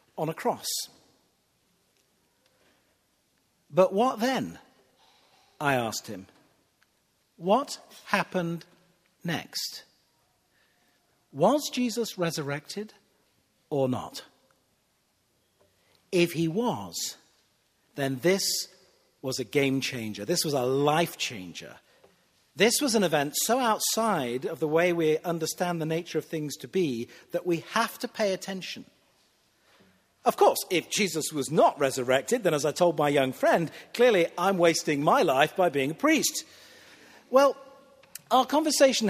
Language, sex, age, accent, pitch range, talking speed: English, male, 50-69, British, 150-230 Hz, 125 wpm